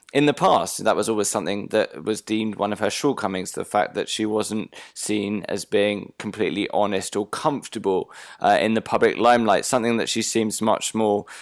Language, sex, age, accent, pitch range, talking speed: English, male, 20-39, British, 105-125 Hz, 195 wpm